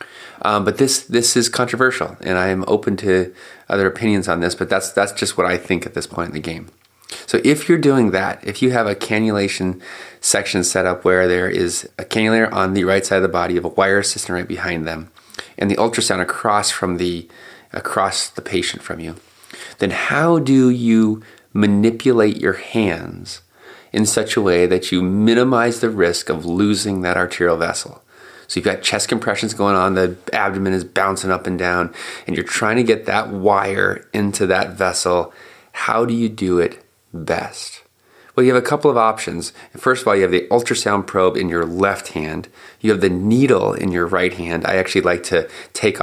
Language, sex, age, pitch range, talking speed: English, male, 30-49, 90-115 Hz, 200 wpm